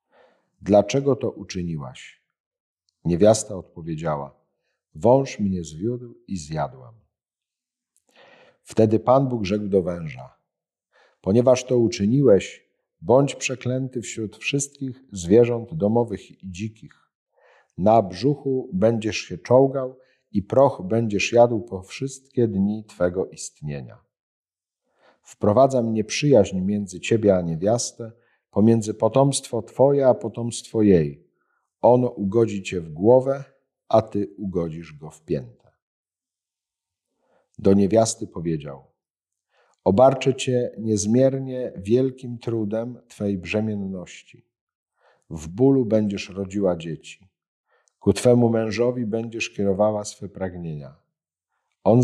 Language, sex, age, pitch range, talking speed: Polish, male, 50-69, 95-125 Hz, 100 wpm